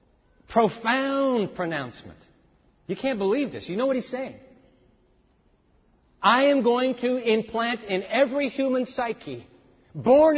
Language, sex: English, male